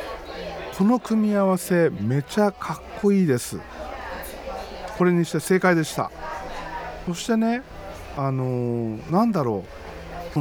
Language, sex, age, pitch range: Japanese, male, 50-69, 130-200 Hz